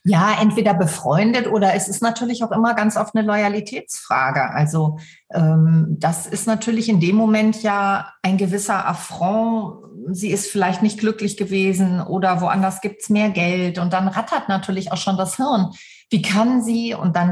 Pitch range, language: 180-210 Hz, German